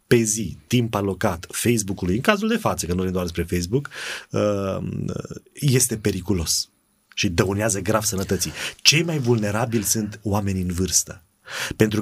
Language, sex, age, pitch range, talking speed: Romanian, male, 30-49, 105-135 Hz, 145 wpm